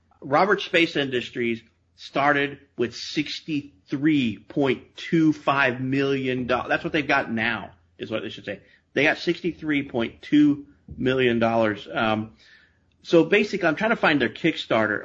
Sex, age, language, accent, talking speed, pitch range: male, 40-59, English, American, 120 wpm, 110-150 Hz